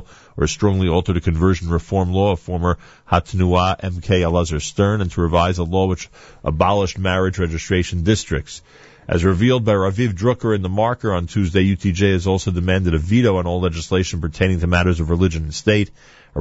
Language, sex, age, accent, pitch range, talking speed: English, male, 40-59, American, 85-115 Hz, 185 wpm